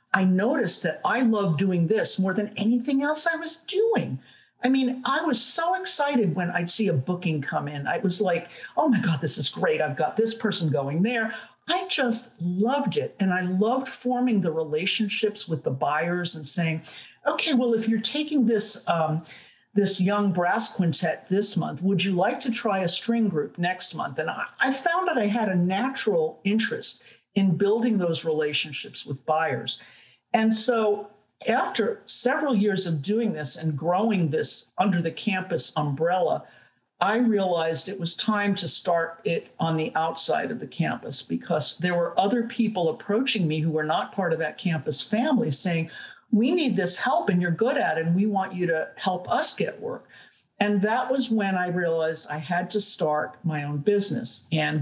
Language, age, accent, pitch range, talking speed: English, 50-69, American, 165-225 Hz, 190 wpm